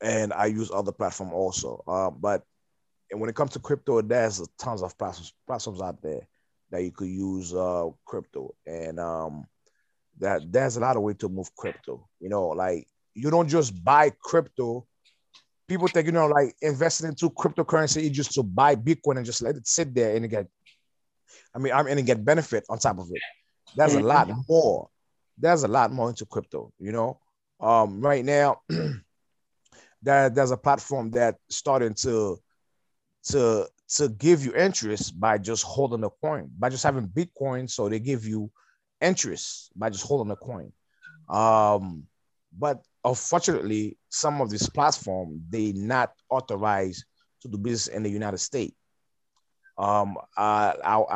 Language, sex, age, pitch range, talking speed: English, male, 30-49, 100-145 Hz, 165 wpm